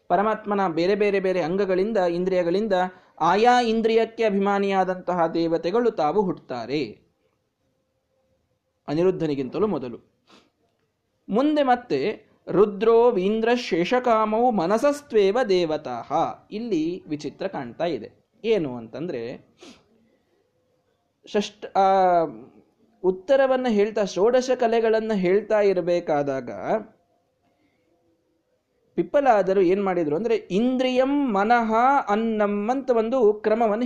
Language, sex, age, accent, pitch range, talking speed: Kannada, male, 20-39, native, 185-250 Hz, 75 wpm